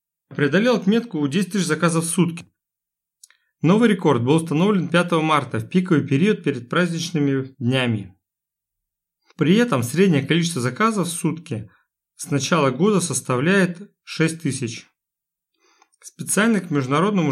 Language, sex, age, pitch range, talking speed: Russian, male, 30-49, 135-185 Hz, 125 wpm